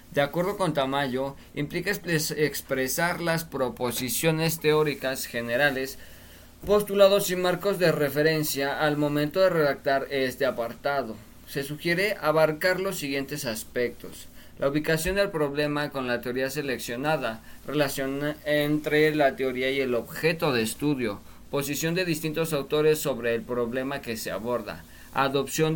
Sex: male